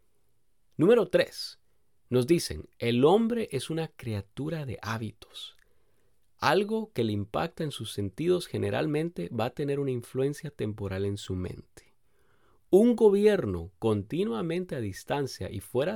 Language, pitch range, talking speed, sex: English, 105-150 Hz, 130 wpm, male